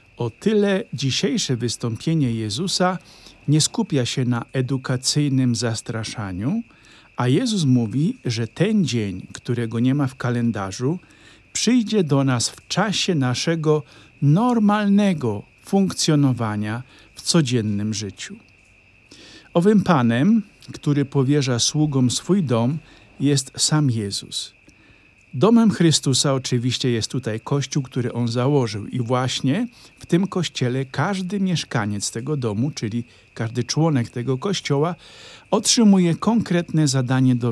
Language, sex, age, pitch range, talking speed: Polish, male, 50-69, 120-175 Hz, 110 wpm